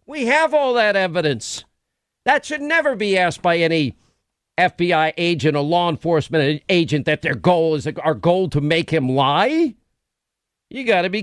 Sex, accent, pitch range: male, American, 165-230 Hz